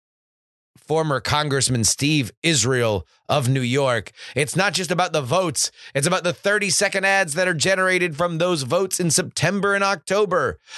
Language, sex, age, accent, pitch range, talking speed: English, male, 30-49, American, 125-185 Hz, 155 wpm